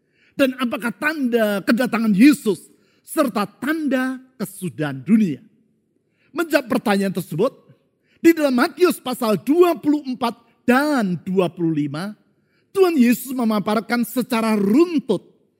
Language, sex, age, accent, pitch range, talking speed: Indonesian, male, 50-69, native, 200-275 Hz, 90 wpm